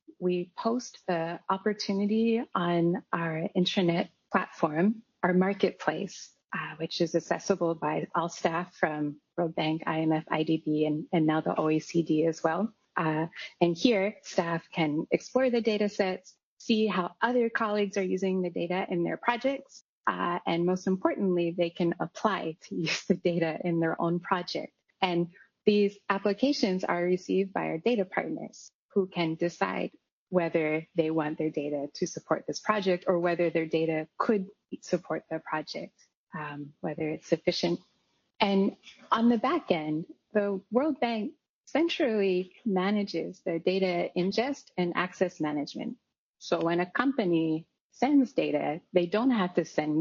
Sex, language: female, English